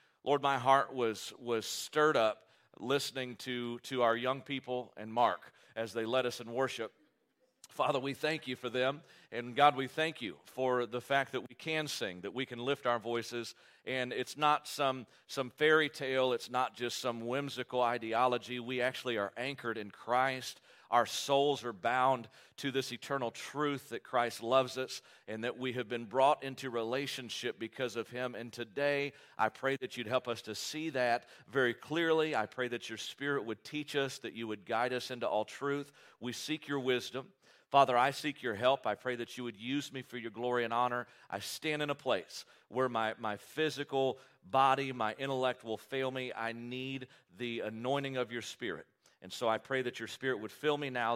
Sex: male